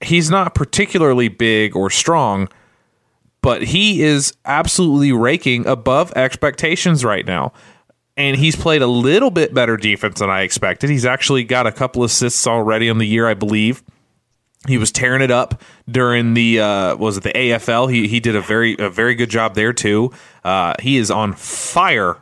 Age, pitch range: 30-49, 105-140 Hz